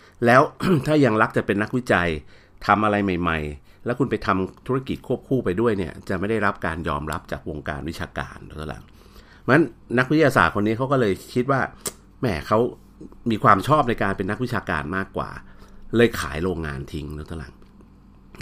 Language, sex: Thai, male